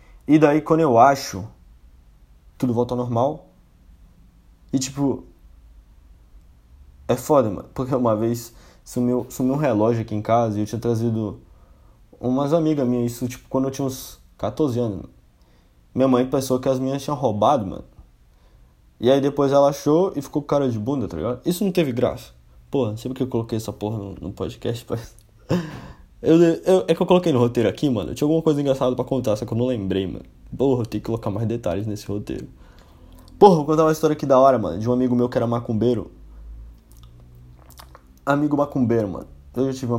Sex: male